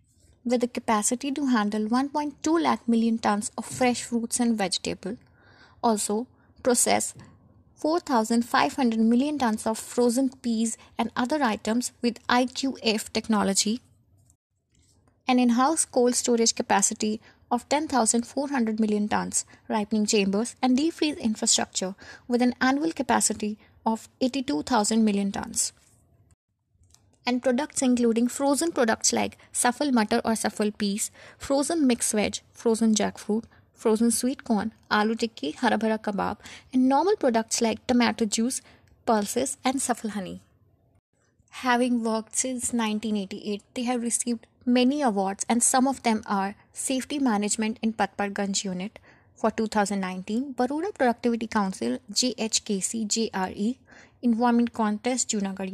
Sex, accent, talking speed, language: female, native, 125 wpm, Hindi